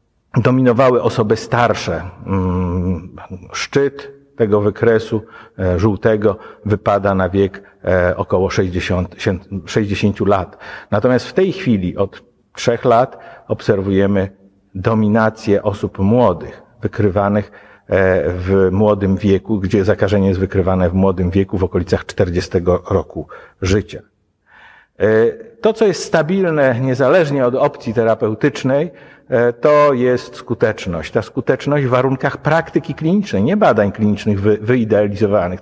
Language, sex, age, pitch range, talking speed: Polish, male, 50-69, 100-130 Hz, 105 wpm